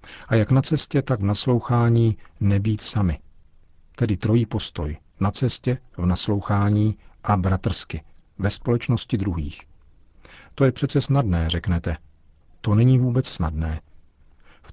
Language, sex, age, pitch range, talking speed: Czech, male, 50-69, 85-110 Hz, 125 wpm